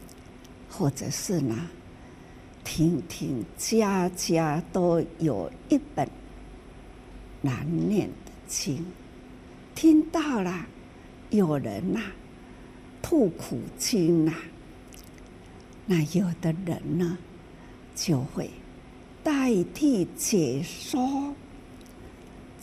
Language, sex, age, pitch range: Chinese, female, 60-79, 165-250 Hz